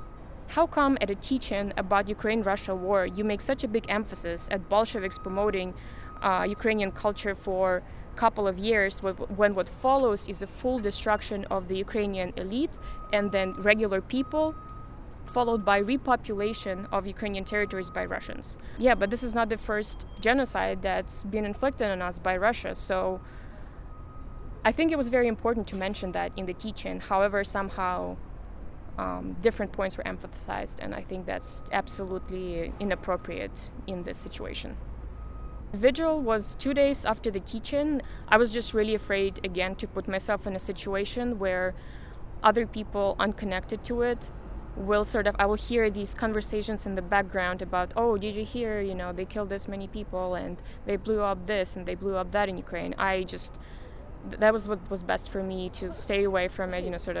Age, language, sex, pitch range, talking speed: 20-39, English, female, 185-220 Hz, 180 wpm